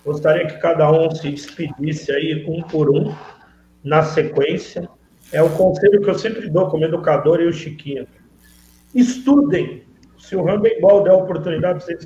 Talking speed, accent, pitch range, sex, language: 165 wpm, Brazilian, 160-225 Hz, male, Portuguese